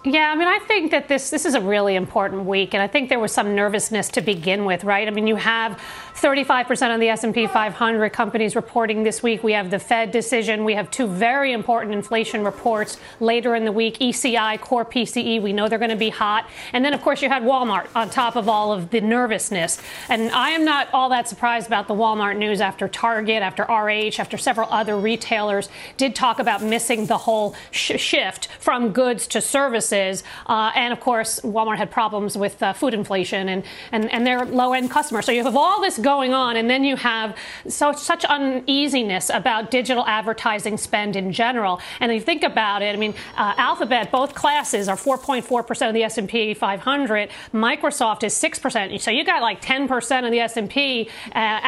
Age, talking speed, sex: 40-59, 200 wpm, female